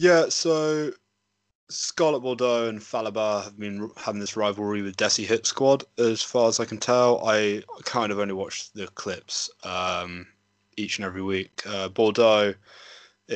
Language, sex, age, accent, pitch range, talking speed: English, male, 20-39, British, 95-110 Hz, 155 wpm